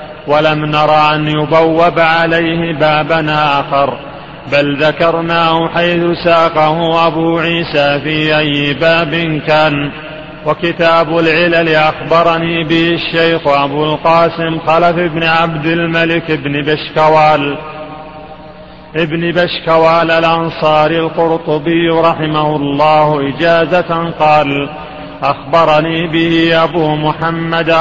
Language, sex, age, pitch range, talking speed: Arabic, male, 40-59, 150-165 Hz, 90 wpm